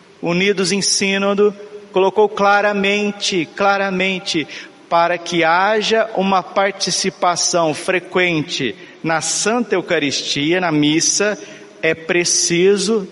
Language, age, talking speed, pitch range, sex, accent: Portuguese, 50-69, 85 wpm, 170-205 Hz, male, Brazilian